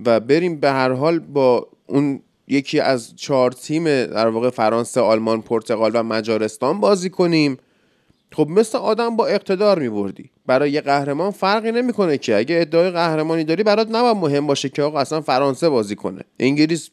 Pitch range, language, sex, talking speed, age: 145-205 Hz, Persian, male, 170 wpm, 30-49